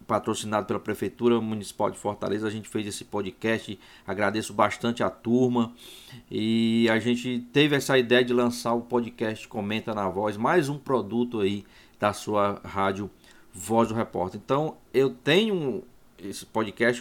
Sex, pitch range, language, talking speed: male, 115-150 Hz, Portuguese, 150 wpm